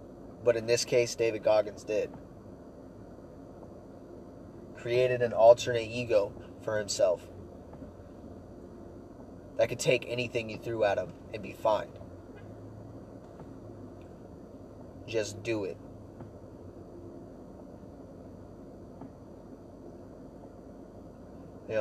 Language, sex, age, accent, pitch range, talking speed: English, male, 20-39, American, 90-115 Hz, 75 wpm